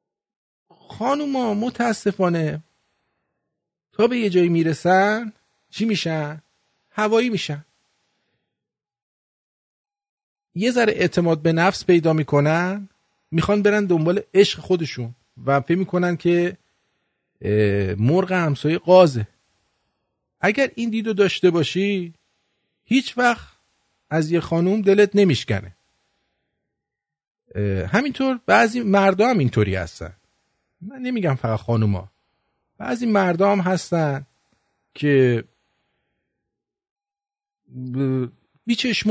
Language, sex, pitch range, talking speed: English, male, 140-205 Hz, 90 wpm